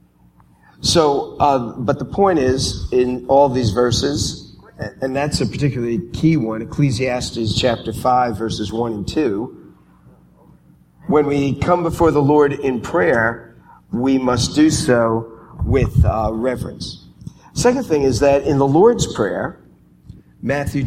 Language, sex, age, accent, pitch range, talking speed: English, male, 50-69, American, 105-140 Hz, 135 wpm